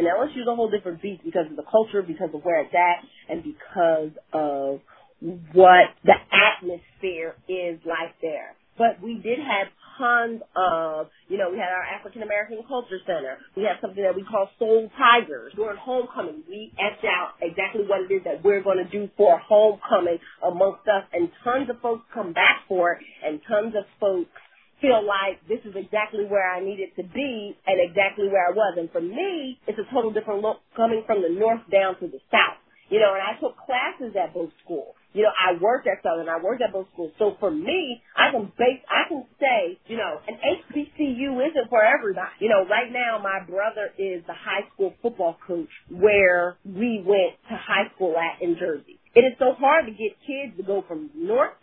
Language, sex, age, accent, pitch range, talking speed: English, female, 30-49, American, 180-235 Hz, 205 wpm